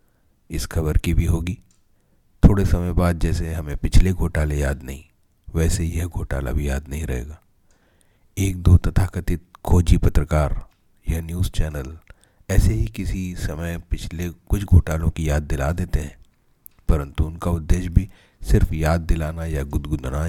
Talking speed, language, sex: 150 wpm, Hindi, male